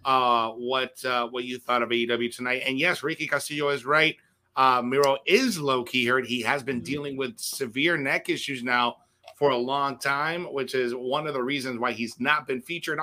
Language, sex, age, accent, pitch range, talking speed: English, male, 30-49, American, 130-175 Hz, 205 wpm